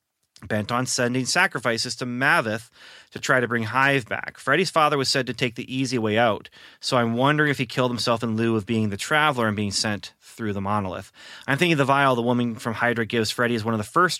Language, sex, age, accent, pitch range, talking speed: English, male, 30-49, American, 105-125 Hz, 240 wpm